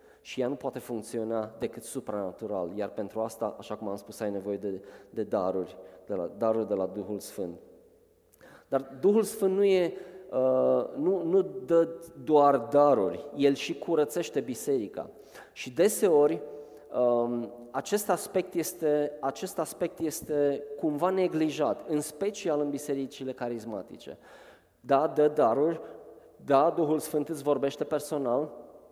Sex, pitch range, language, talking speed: male, 130-165 Hz, Romanian, 135 wpm